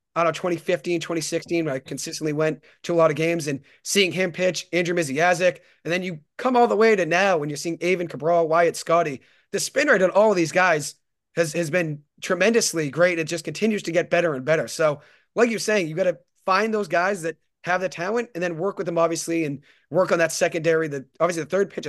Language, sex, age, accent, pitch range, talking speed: English, male, 30-49, American, 160-185 Hz, 235 wpm